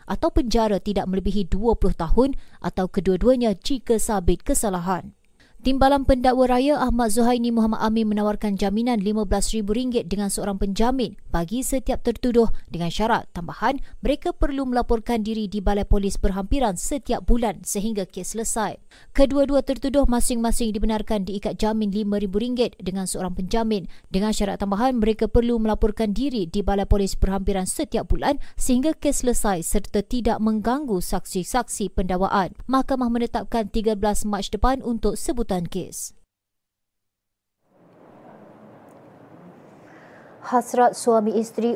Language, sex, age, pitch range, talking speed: Malay, female, 30-49, 200-240 Hz, 120 wpm